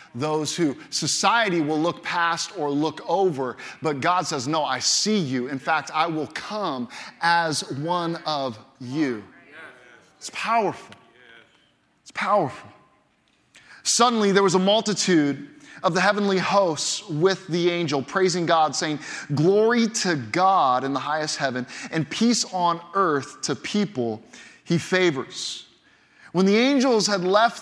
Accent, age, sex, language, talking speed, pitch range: American, 30-49, male, English, 140 wpm, 170-220 Hz